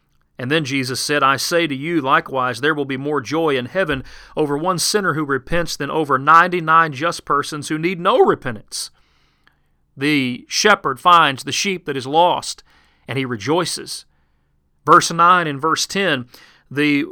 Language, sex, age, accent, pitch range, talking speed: English, male, 40-59, American, 135-170 Hz, 165 wpm